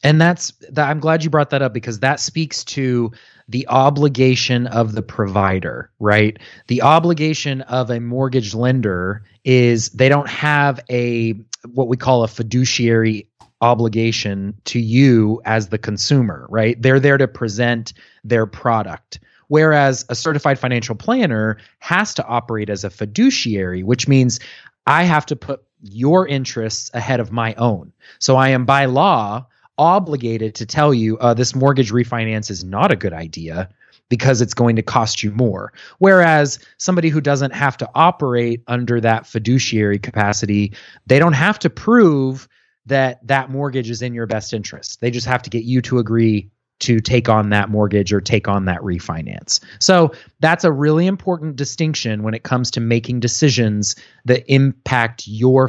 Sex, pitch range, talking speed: male, 110-140 Hz, 165 wpm